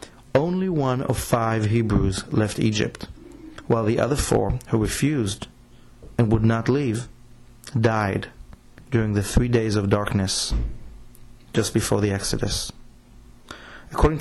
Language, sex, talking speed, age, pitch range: English, male, 120 wpm, 30-49, 105-120 Hz